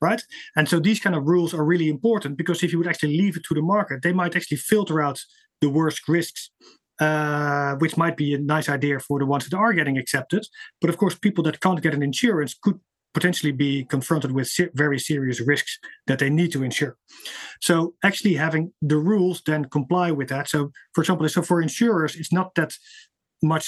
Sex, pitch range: male, 145-175 Hz